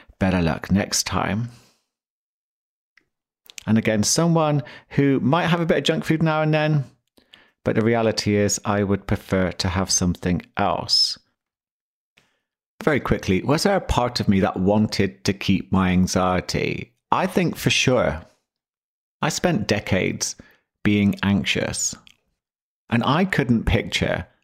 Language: English